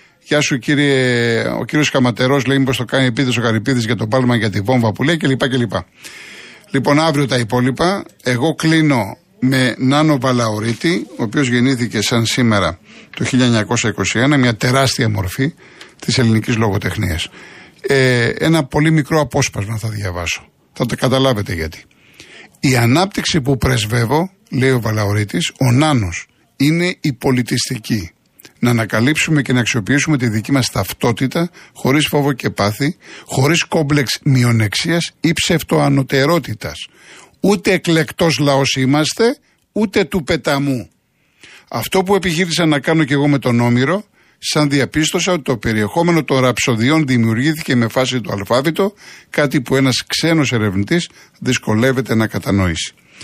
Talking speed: 140 wpm